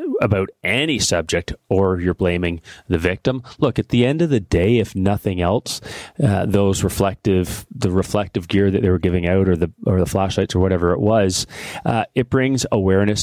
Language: English